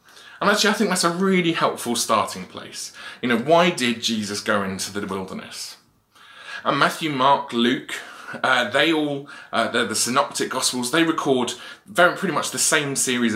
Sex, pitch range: male, 115-160 Hz